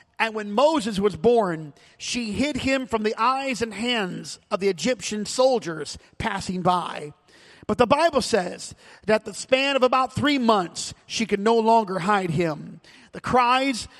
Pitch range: 195-245 Hz